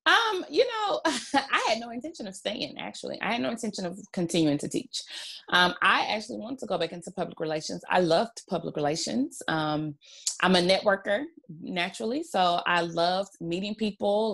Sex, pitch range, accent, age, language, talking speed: female, 175-245 Hz, American, 20-39, English, 175 wpm